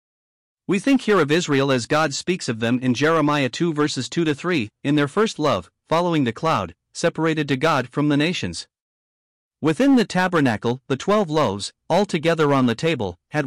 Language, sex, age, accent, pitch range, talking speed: English, male, 50-69, American, 125-170 Hz, 180 wpm